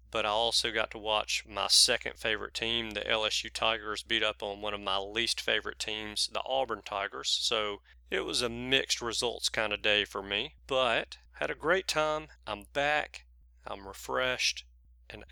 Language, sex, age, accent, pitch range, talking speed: English, male, 40-59, American, 95-125 Hz, 180 wpm